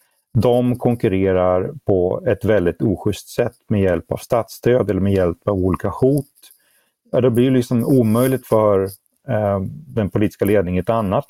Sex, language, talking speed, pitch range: male, Swedish, 150 wpm, 95-120 Hz